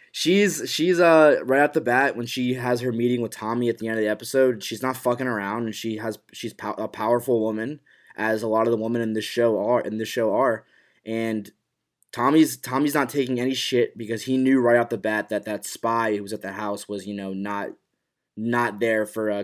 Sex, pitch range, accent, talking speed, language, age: male, 110-130 Hz, American, 230 wpm, English, 20-39